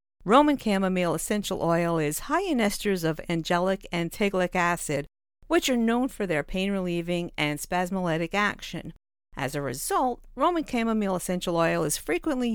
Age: 50-69